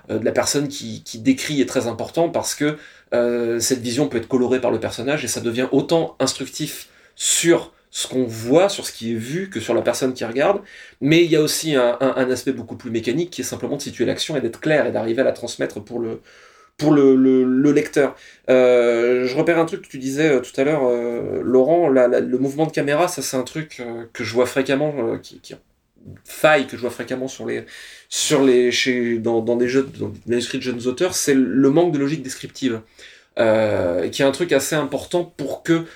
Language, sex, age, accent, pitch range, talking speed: French, male, 30-49, French, 125-150 Hz, 225 wpm